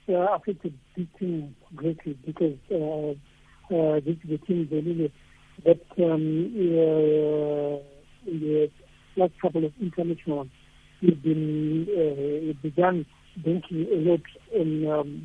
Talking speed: 125 wpm